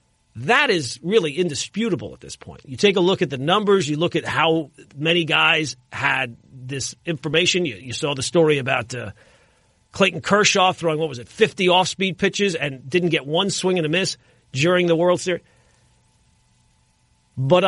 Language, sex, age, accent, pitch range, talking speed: English, male, 40-59, American, 150-215 Hz, 175 wpm